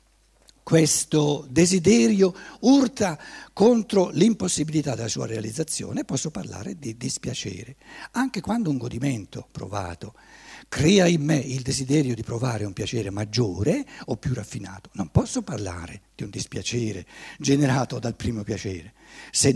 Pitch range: 110-165 Hz